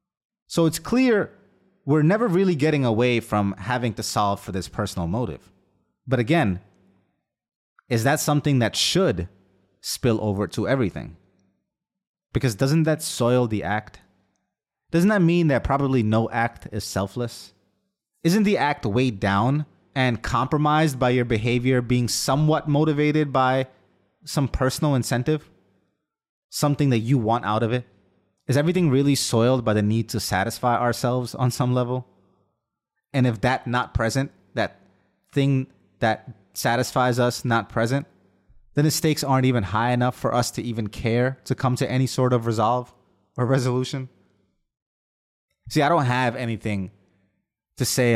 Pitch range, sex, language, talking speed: 100-135 Hz, male, English, 150 wpm